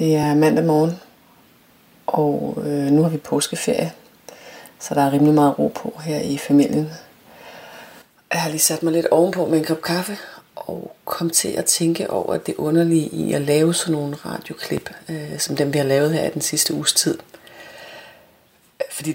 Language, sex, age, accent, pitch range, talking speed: Danish, female, 30-49, native, 140-160 Hz, 175 wpm